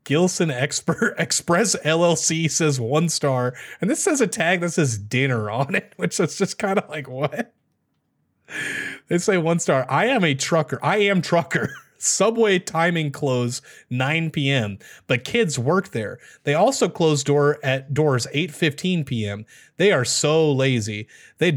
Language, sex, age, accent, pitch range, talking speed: English, male, 30-49, American, 115-165 Hz, 160 wpm